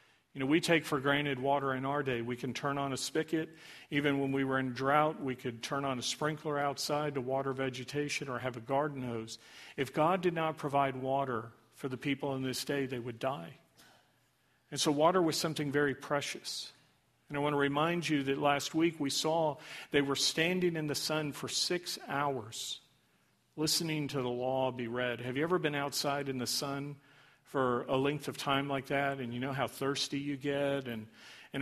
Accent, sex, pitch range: American, male, 130-145 Hz